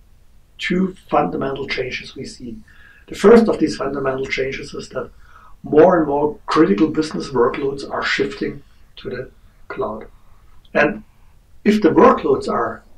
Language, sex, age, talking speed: English, male, 60-79, 135 wpm